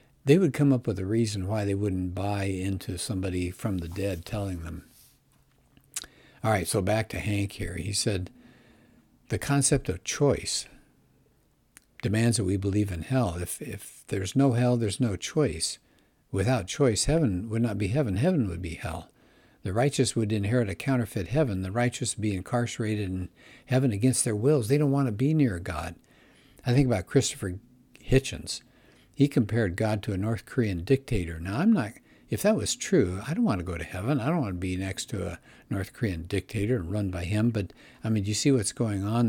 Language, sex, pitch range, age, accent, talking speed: English, male, 95-125 Hz, 60-79, American, 200 wpm